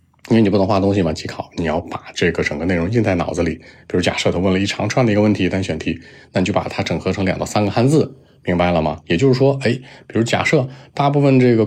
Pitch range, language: 90-120 Hz, Chinese